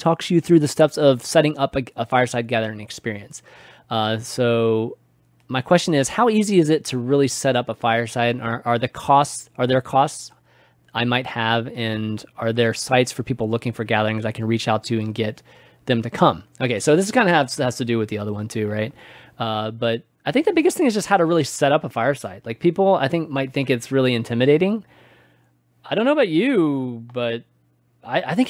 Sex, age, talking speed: male, 20-39, 225 wpm